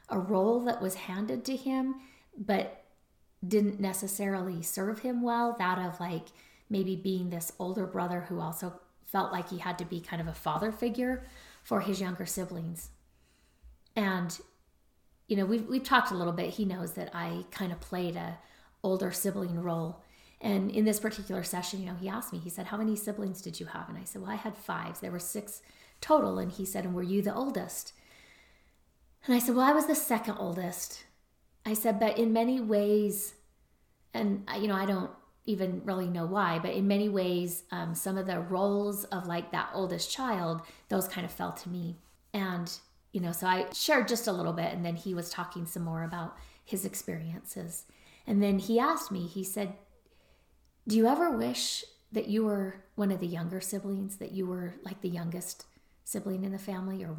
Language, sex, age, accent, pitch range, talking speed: English, female, 40-59, American, 175-210 Hz, 200 wpm